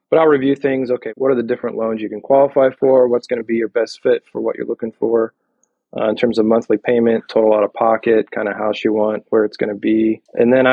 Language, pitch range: English, 110-130 Hz